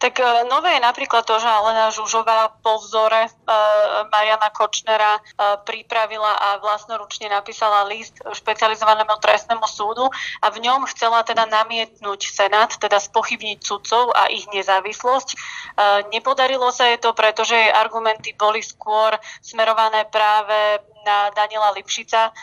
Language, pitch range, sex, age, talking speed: Slovak, 205-225 Hz, female, 20-39, 135 wpm